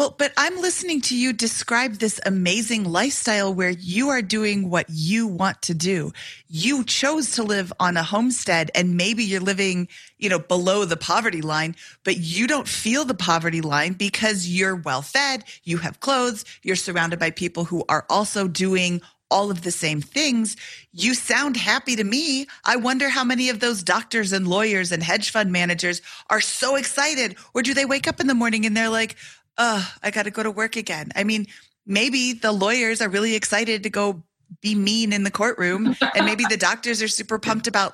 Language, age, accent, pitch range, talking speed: English, 30-49, American, 185-240 Hz, 200 wpm